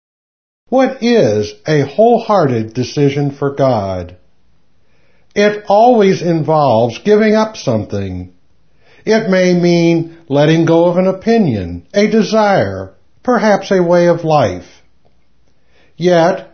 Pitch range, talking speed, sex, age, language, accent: 125-205 Hz, 105 wpm, male, 60-79, English, American